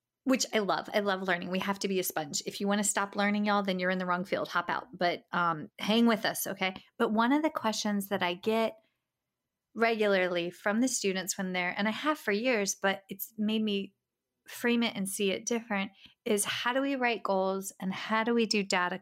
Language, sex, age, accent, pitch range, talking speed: English, female, 30-49, American, 190-230 Hz, 235 wpm